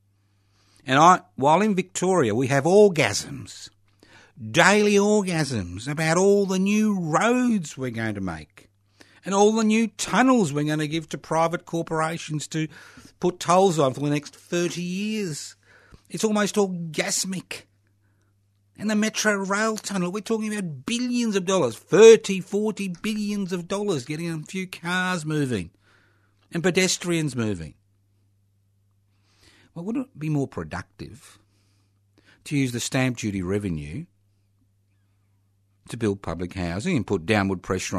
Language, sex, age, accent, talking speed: English, male, 60-79, Australian, 135 wpm